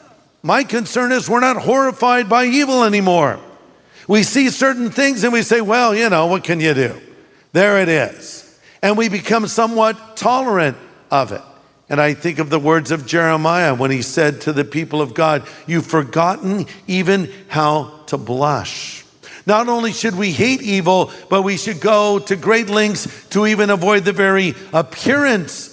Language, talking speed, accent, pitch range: English, 175 wpm, American, 160-210 Hz